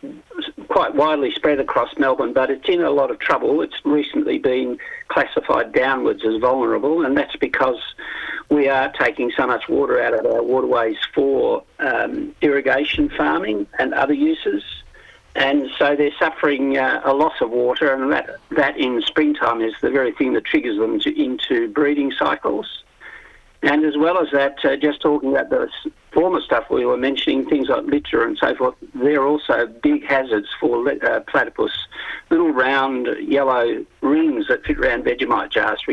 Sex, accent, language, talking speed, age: male, Australian, English, 170 wpm, 50-69